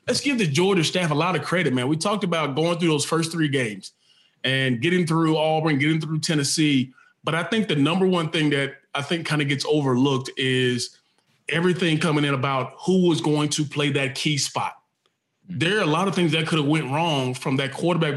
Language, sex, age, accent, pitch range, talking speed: English, male, 20-39, American, 140-170 Hz, 220 wpm